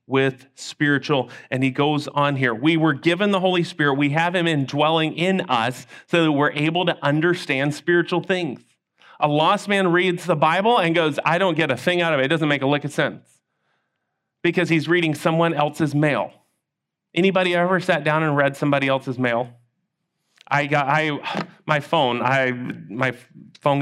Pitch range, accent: 135-170 Hz, American